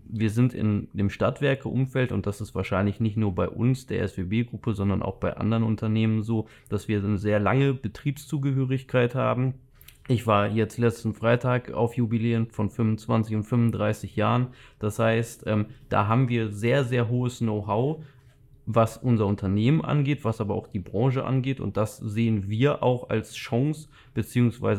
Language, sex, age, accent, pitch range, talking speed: German, male, 20-39, German, 105-130 Hz, 160 wpm